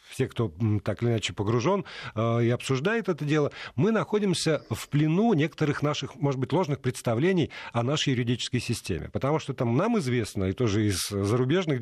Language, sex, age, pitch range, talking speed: Russian, male, 40-59, 120-170 Hz, 170 wpm